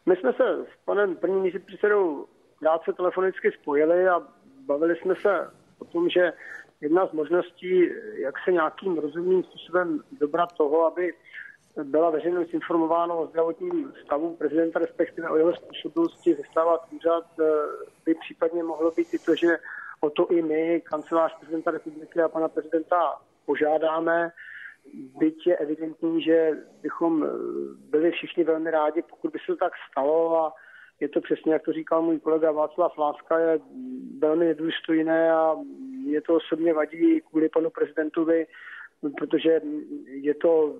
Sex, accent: male, native